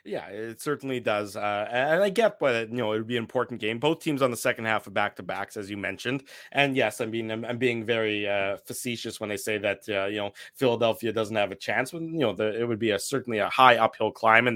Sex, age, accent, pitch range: male, 20-39, American, 110-130 Hz